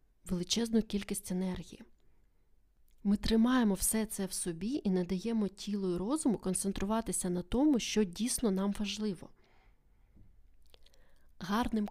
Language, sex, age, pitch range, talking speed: Ukrainian, female, 20-39, 190-230 Hz, 110 wpm